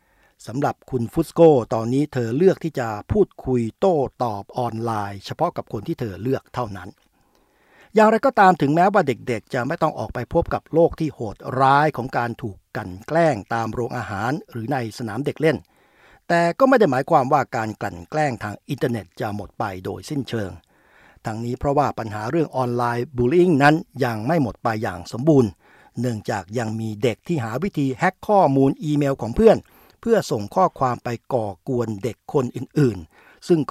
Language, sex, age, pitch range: Thai, male, 60-79, 115-155 Hz